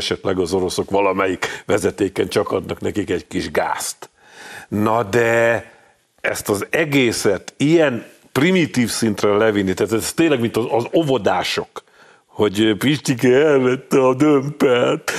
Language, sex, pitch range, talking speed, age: Hungarian, male, 110-135 Hz, 125 wpm, 50-69